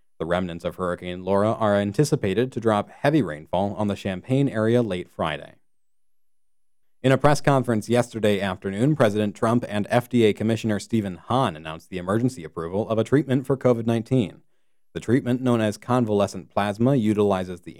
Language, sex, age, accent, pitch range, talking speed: English, male, 30-49, American, 90-120 Hz, 160 wpm